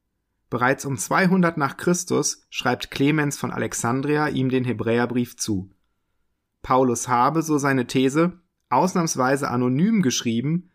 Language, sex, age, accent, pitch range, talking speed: German, male, 30-49, German, 115-150 Hz, 115 wpm